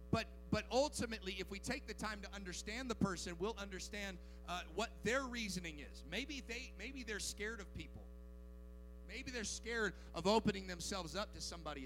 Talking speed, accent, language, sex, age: 175 wpm, American, English, male, 40-59